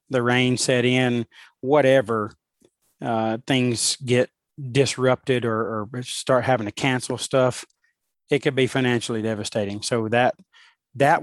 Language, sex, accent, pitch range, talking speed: English, male, American, 115-135 Hz, 130 wpm